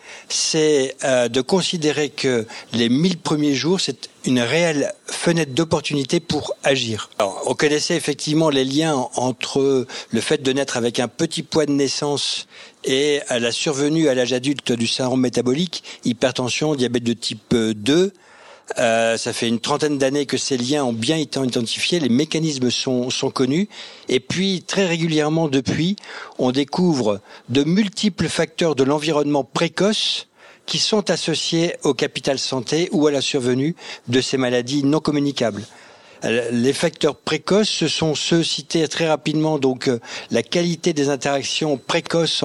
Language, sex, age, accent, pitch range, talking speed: French, male, 60-79, French, 130-165 Hz, 150 wpm